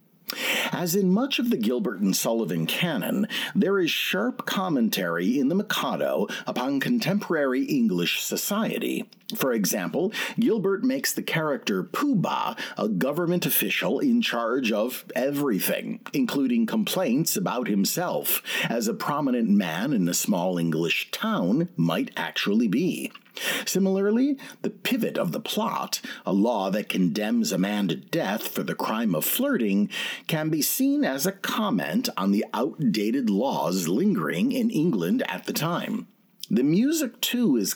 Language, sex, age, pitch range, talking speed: English, male, 50-69, 180-240 Hz, 145 wpm